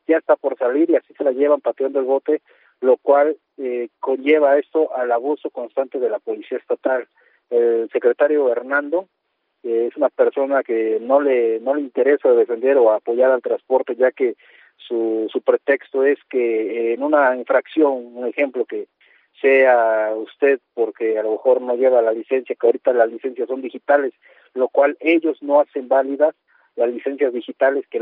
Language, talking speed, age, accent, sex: Spanish, 175 wpm, 40-59, Mexican, male